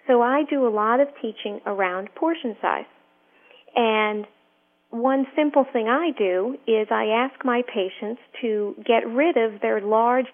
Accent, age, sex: American, 40-59, female